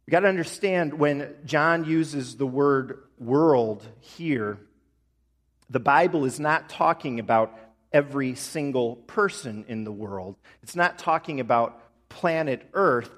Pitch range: 115-165 Hz